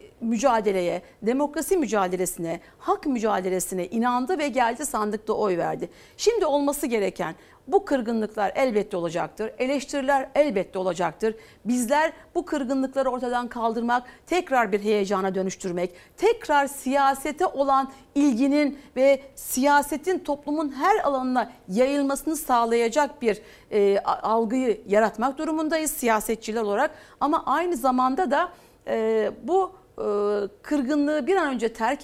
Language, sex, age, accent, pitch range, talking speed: Turkish, female, 50-69, native, 225-305 Hz, 110 wpm